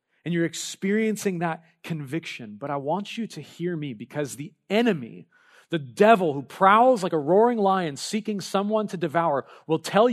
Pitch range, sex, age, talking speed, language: 145-205 Hz, male, 40-59, 170 wpm, English